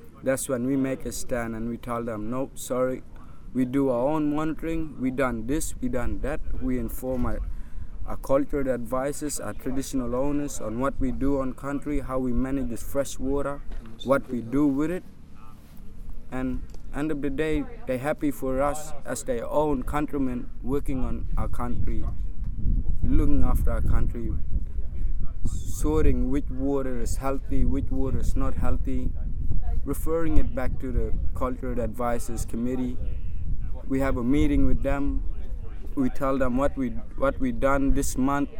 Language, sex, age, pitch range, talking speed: English, male, 20-39, 105-140 Hz, 160 wpm